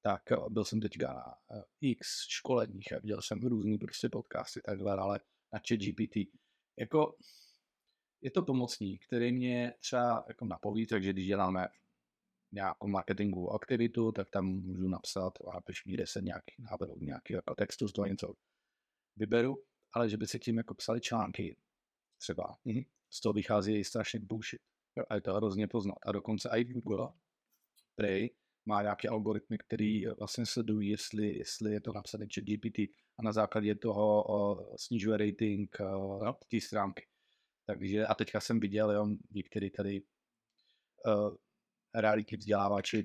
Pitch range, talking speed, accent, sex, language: 100-115 Hz, 160 wpm, native, male, Czech